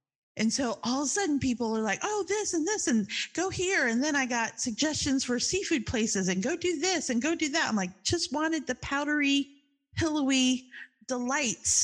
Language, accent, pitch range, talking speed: English, American, 195-275 Hz, 205 wpm